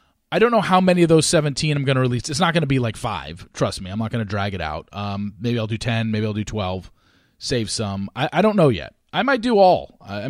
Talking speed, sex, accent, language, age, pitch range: 285 wpm, male, American, English, 30-49, 105-140 Hz